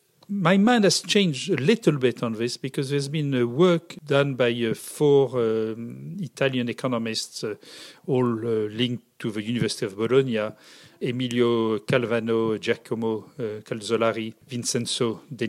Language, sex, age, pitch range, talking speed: English, male, 40-59, 115-165 Hz, 120 wpm